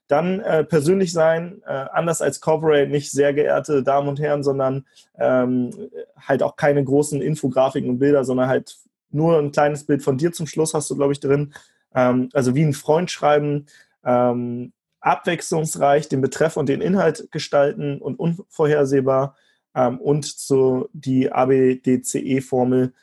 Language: German